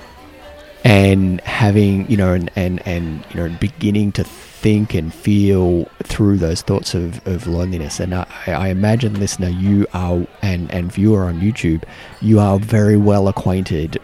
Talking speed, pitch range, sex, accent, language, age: 160 wpm, 85-105 Hz, male, Australian, English, 30-49